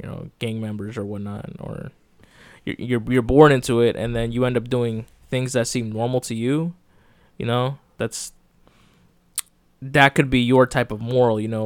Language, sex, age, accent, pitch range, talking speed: English, male, 20-39, American, 110-135 Hz, 190 wpm